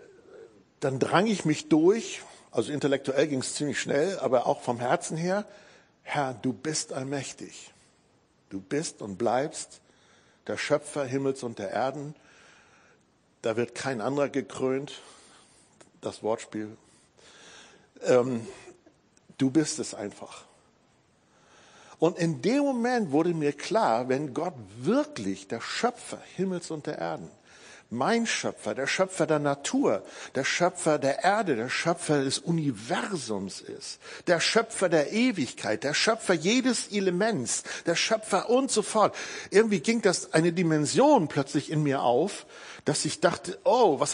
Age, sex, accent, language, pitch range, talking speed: 60-79, male, German, German, 140-205 Hz, 135 wpm